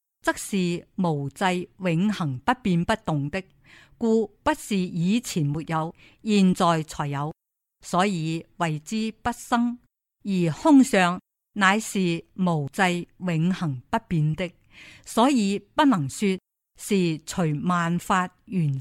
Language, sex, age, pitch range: Chinese, female, 50-69, 160-225 Hz